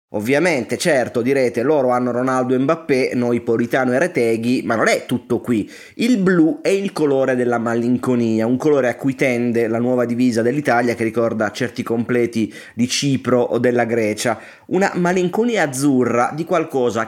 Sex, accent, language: male, native, Italian